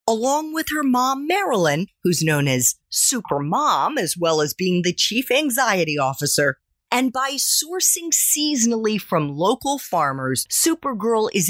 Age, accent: 40-59, American